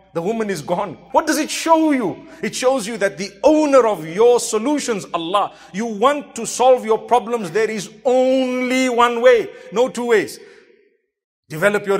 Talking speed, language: 175 wpm, English